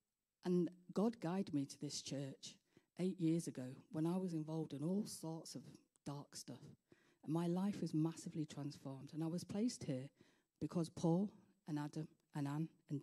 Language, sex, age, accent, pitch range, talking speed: English, female, 40-59, British, 150-190 Hz, 175 wpm